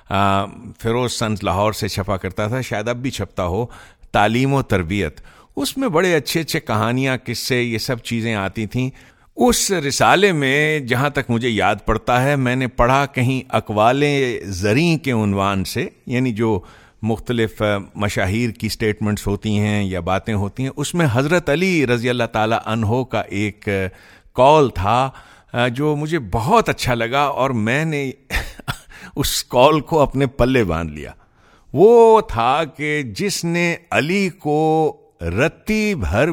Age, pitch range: 50-69, 105-145 Hz